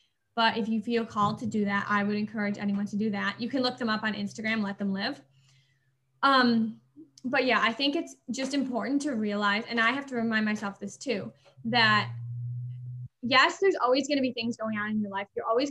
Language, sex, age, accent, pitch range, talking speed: English, female, 10-29, American, 210-280 Hz, 220 wpm